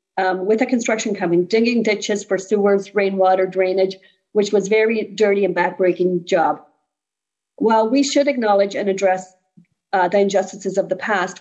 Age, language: 50-69, English